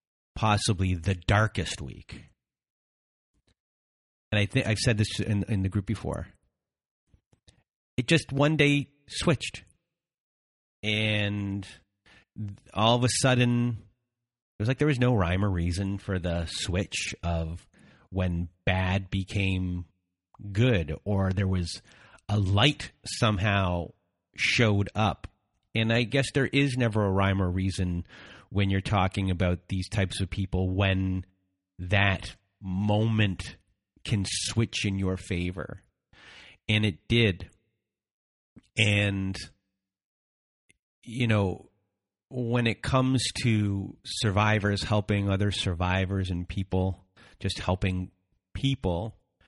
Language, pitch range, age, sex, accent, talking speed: English, 95-110 Hz, 30-49, male, American, 115 wpm